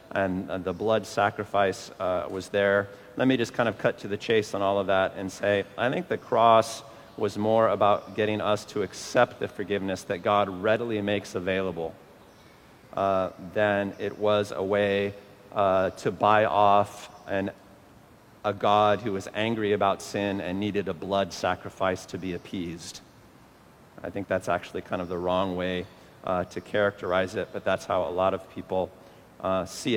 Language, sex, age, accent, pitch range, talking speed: English, male, 40-59, American, 95-110 Hz, 175 wpm